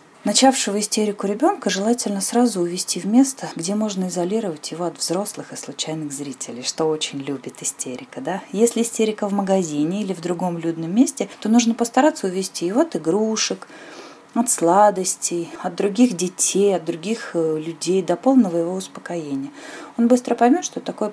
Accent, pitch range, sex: native, 165-245 Hz, female